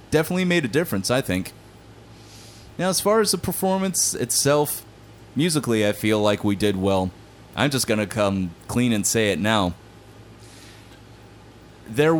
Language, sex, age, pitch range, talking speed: English, male, 30-49, 100-115 Hz, 150 wpm